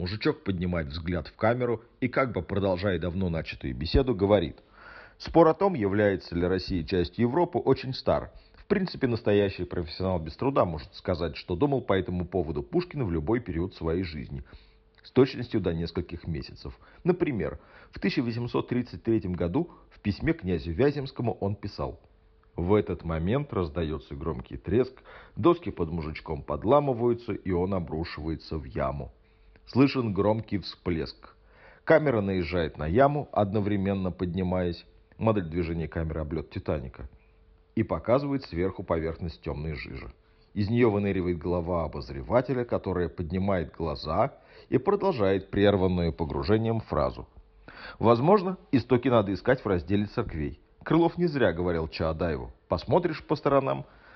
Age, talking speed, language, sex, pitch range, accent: 40-59, 135 wpm, Russian, male, 85-115 Hz, native